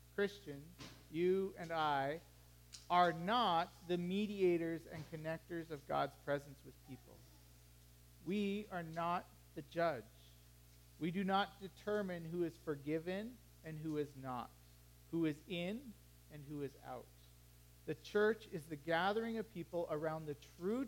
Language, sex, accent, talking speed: English, male, American, 140 wpm